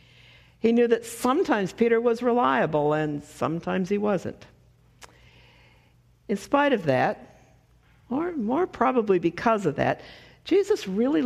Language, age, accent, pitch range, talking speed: English, 60-79, American, 165-250 Hz, 125 wpm